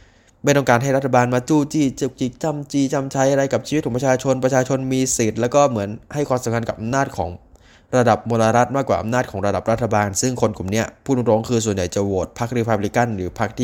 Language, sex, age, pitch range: Thai, male, 20-39, 100-125 Hz